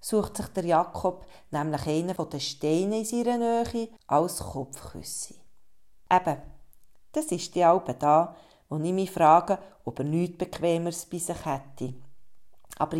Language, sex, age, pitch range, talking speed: German, female, 40-59, 155-205 Hz, 150 wpm